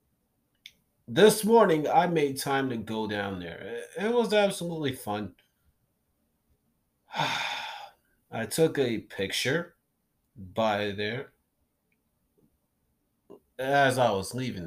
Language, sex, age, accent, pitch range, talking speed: English, male, 30-49, American, 110-150 Hz, 95 wpm